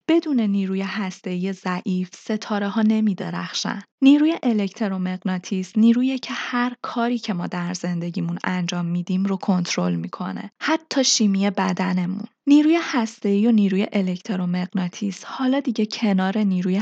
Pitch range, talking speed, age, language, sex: 185-235 Hz, 120 wpm, 20-39, Persian, female